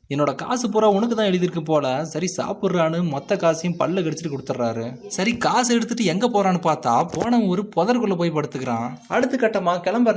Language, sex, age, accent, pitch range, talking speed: Tamil, male, 20-39, native, 140-195 Hz, 165 wpm